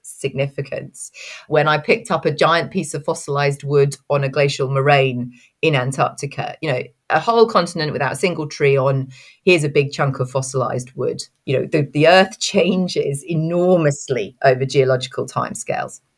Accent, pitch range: British, 135-160 Hz